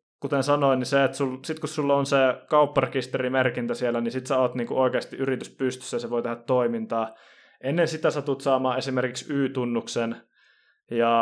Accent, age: native, 20-39